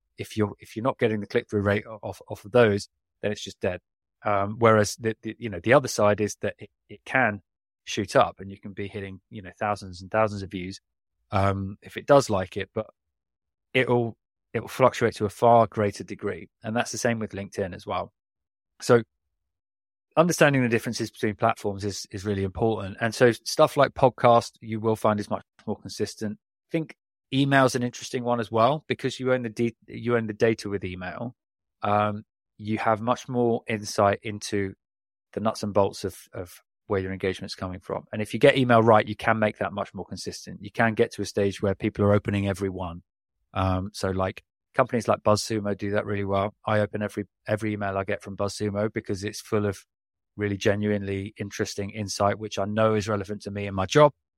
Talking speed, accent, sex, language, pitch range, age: 215 wpm, British, male, English, 100-115 Hz, 20-39